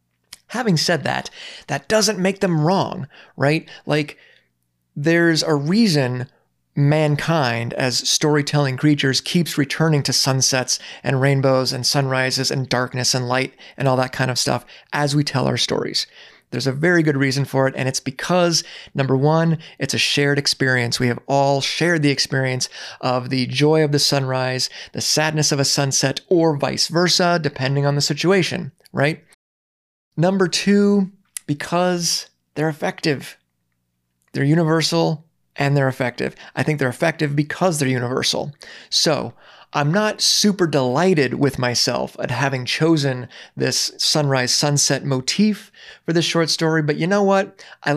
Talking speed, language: 150 wpm, English